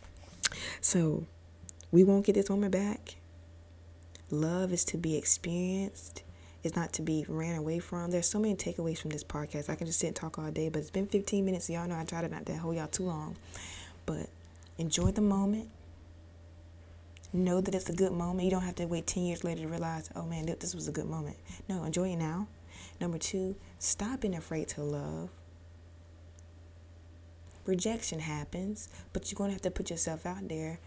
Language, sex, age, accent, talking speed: English, female, 20-39, American, 195 wpm